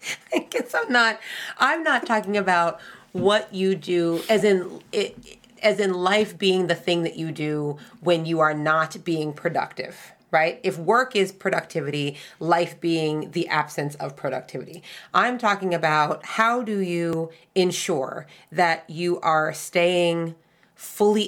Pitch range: 155-185 Hz